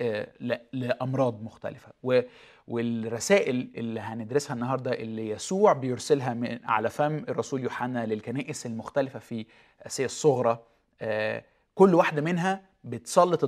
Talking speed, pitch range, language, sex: 100 wpm, 120-155 Hz, Arabic, male